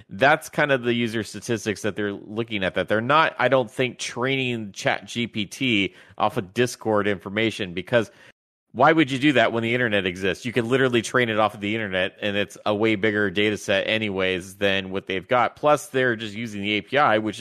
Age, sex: 30-49, male